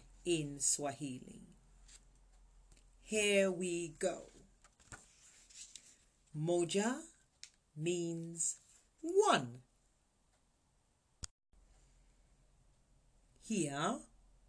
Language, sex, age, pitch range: English, female, 40-59, 140-210 Hz